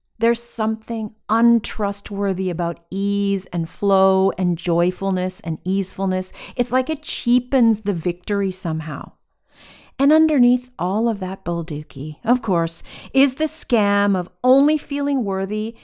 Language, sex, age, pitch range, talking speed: English, female, 40-59, 180-245 Hz, 125 wpm